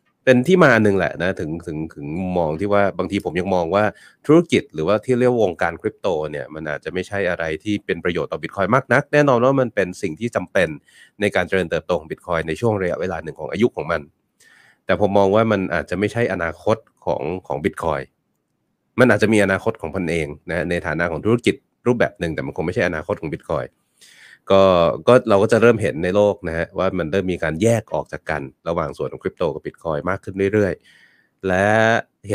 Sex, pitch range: male, 85-115 Hz